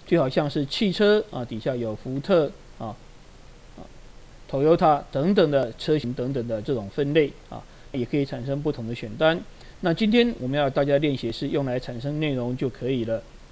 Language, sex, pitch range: Chinese, male, 125-165 Hz